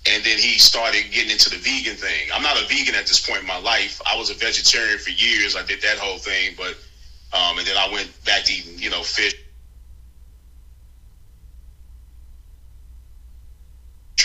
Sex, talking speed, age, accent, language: male, 175 wpm, 30-49, American, English